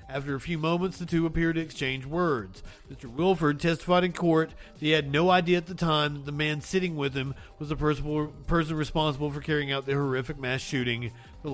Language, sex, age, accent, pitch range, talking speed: English, male, 40-59, American, 135-160 Hz, 215 wpm